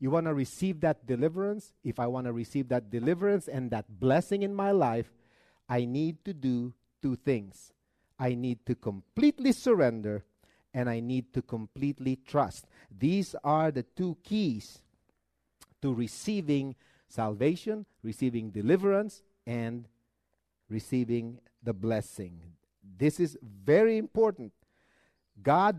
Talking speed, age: 130 wpm, 50-69